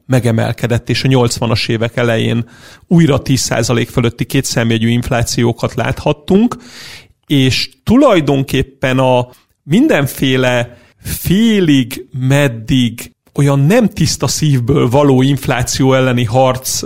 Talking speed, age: 95 wpm, 40-59